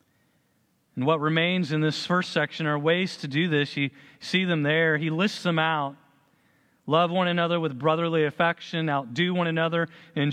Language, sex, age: English, male, 40-59